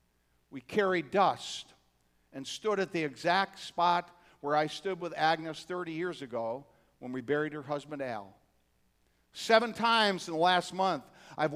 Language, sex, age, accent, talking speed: English, male, 50-69, American, 155 wpm